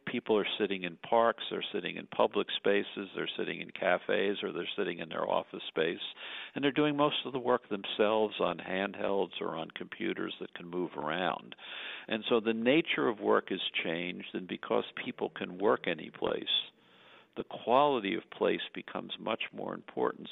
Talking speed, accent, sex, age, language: 175 wpm, American, male, 50-69, English